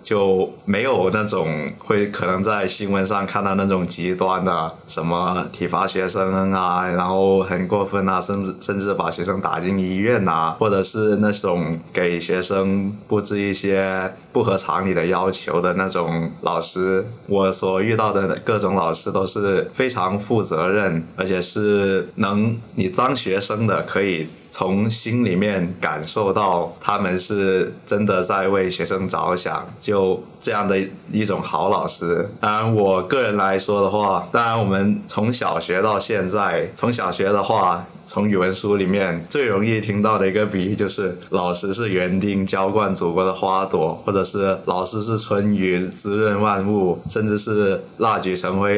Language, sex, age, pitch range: Chinese, male, 20-39, 95-105 Hz